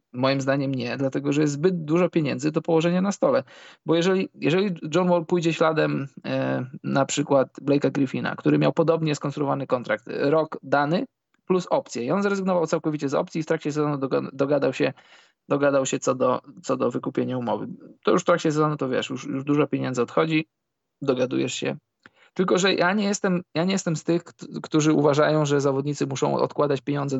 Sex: male